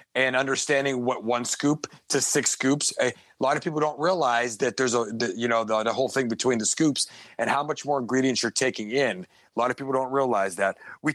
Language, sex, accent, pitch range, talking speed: English, male, American, 125-150 Hz, 230 wpm